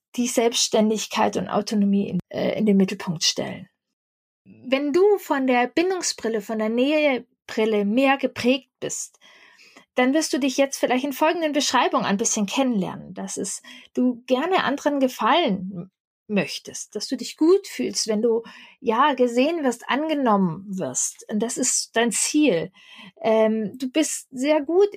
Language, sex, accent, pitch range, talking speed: German, female, German, 220-290 Hz, 150 wpm